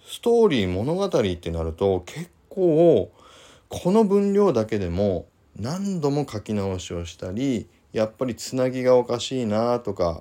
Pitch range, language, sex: 90-130 Hz, Japanese, male